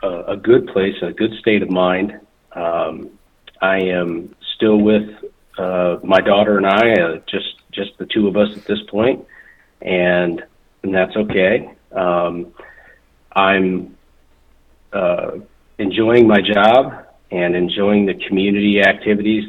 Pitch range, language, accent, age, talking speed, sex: 85-100 Hz, English, American, 40-59, 130 wpm, male